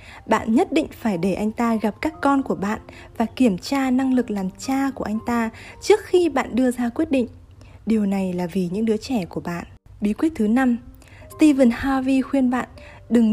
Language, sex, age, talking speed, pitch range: Vietnamese, female, 10-29, 210 wpm, 195-255 Hz